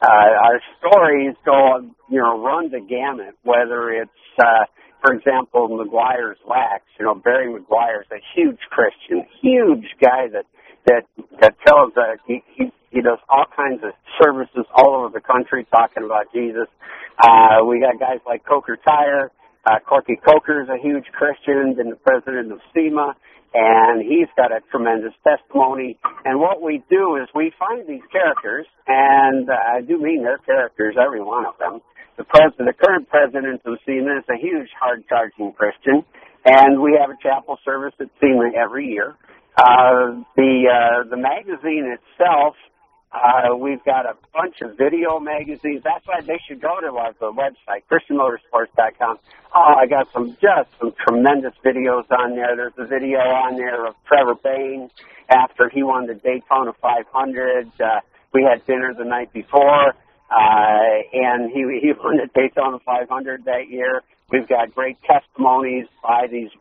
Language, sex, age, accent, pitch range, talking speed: English, male, 60-79, American, 120-145 Hz, 165 wpm